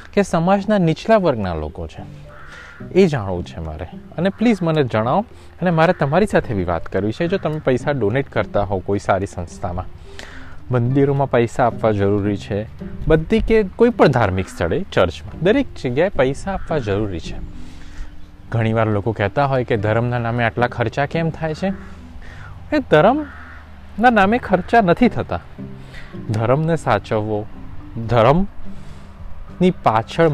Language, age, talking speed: Gujarati, 20-39, 125 wpm